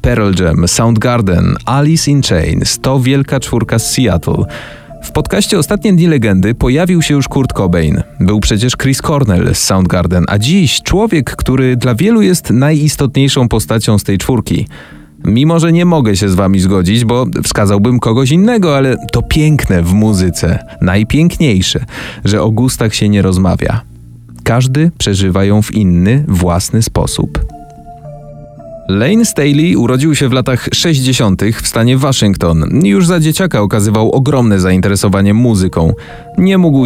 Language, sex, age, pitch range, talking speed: Polish, male, 30-49, 105-140 Hz, 145 wpm